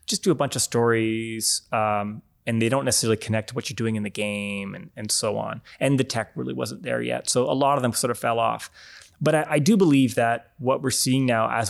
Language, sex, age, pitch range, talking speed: English, male, 20-39, 110-135 Hz, 255 wpm